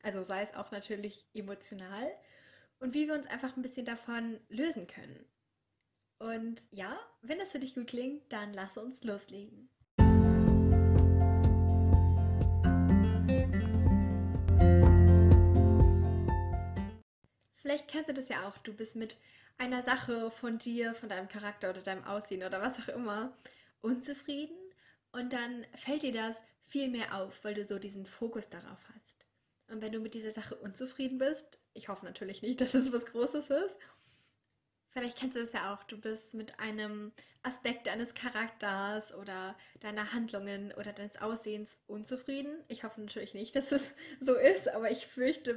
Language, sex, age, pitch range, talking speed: German, female, 10-29, 200-255 Hz, 150 wpm